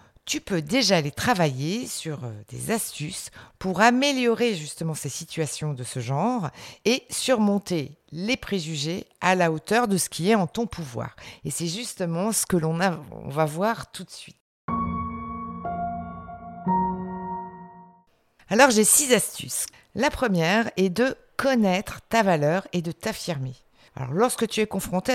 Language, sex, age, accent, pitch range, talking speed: French, female, 50-69, French, 155-215 Hz, 150 wpm